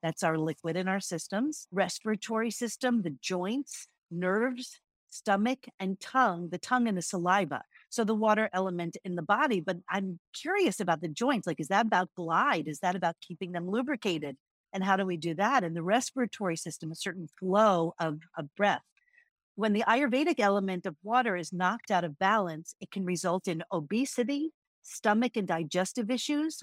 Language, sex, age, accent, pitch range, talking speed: English, female, 50-69, American, 175-245 Hz, 180 wpm